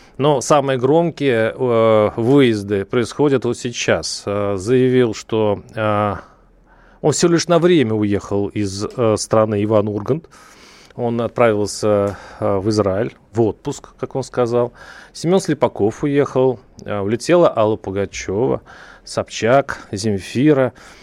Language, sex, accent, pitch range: Russian, male, native, 105-140 Hz